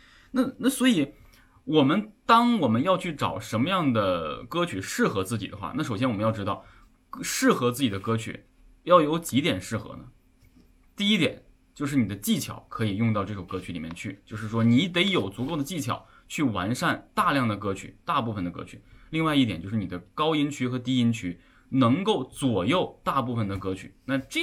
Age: 20-39